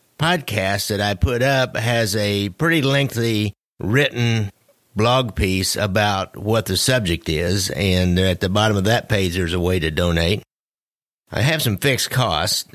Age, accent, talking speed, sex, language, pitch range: 50-69, American, 160 wpm, male, English, 95-115 Hz